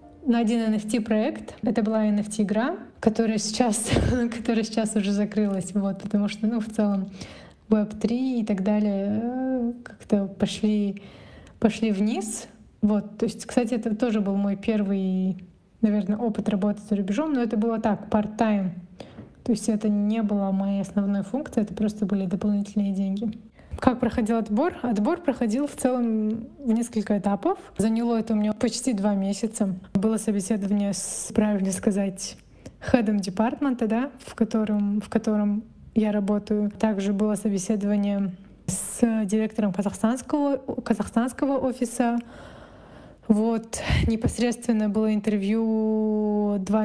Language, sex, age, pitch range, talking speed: Russian, female, 20-39, 205-230 Hz, 130 wpm